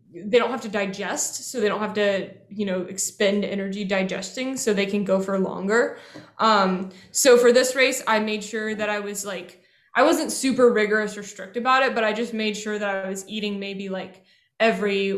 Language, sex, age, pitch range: English, female, 10-29, 200-230 Hz